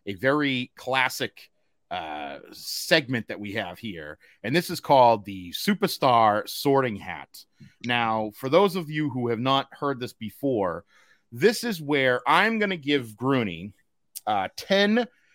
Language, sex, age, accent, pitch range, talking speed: English, male, 30-49, American, 130-190 Hz, 145 wpm